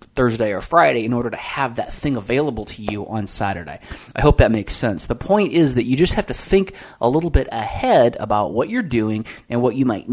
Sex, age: male, 20-39